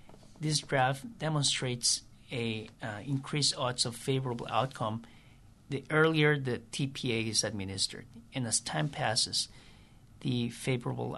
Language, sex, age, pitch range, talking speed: English, male, 50-69, 110-130 Hz, 120 wpm